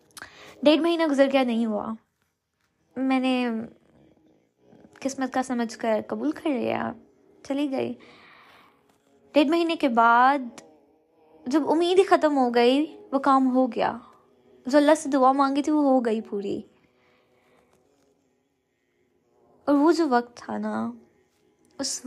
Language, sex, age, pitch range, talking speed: Urdu, female, 20-39, 250-305 Hz, 130 wpm